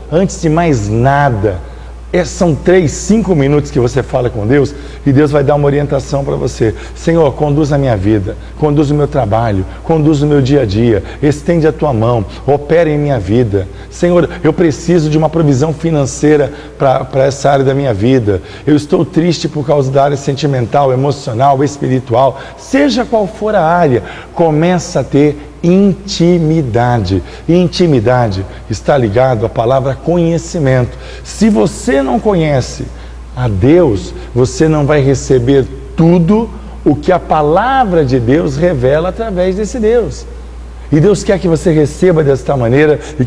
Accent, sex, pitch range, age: Brazilian, male, 125-165 Hz, 50-69